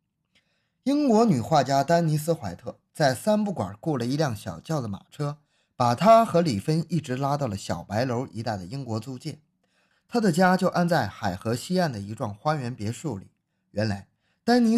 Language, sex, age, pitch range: Chinese, male, 20-39, 115-185 Hz